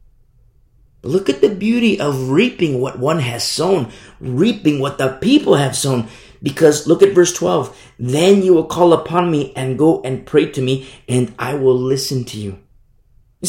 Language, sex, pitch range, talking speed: English, male, 120-180 Hz, 180 wpm